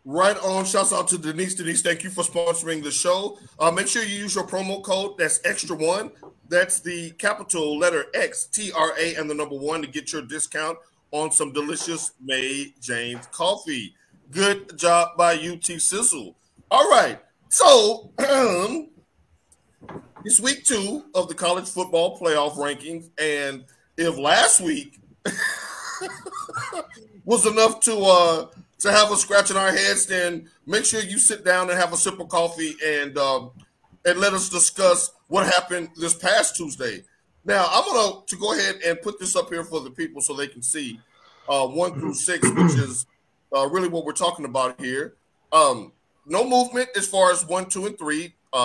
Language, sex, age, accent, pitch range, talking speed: English, male, 40-59, American, 155-195 Hz, 175 wpm